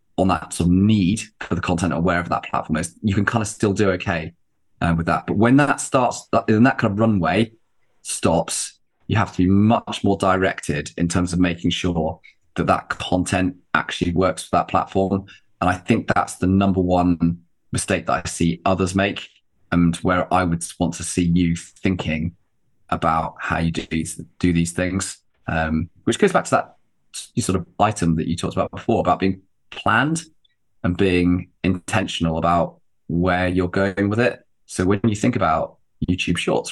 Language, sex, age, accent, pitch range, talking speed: English, male, 20-39, British, 85-100 Hz, 190 wpm